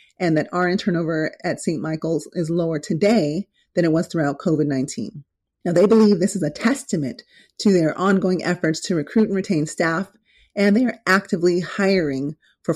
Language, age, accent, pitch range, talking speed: English, 30-49, American, 165-200 Hz, 175 wpm